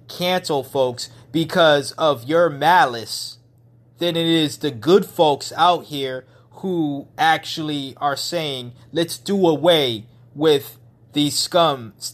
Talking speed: 120 wpm